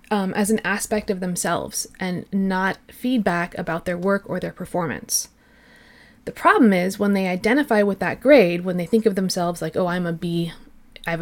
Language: English